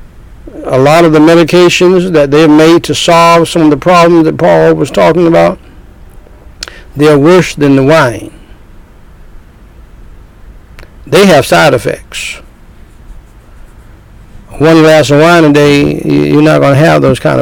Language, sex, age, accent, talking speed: English, male, 60-79, American, 140 wpm